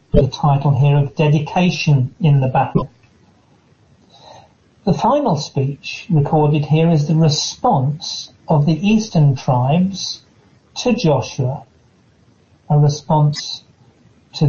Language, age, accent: English, 40-59, British